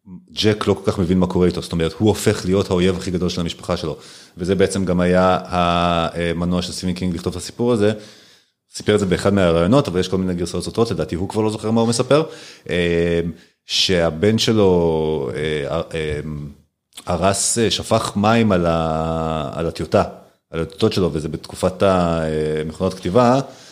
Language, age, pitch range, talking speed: Hebrew, 30-49, 85-105 Hz, 165 wpm